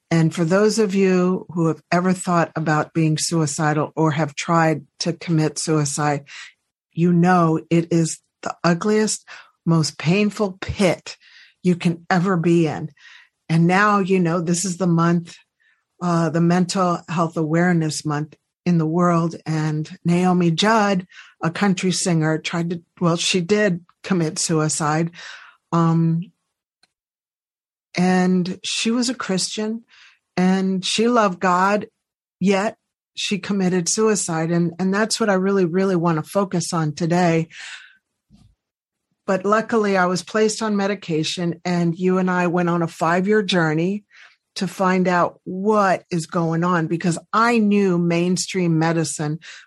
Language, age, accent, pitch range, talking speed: English, 50-69, American, 160-190 Hz, 140 wpm